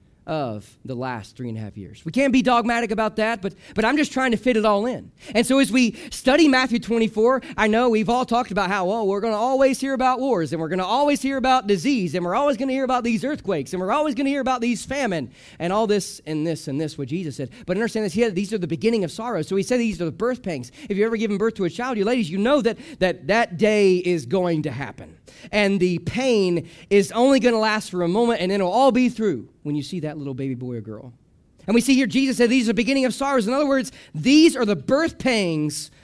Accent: American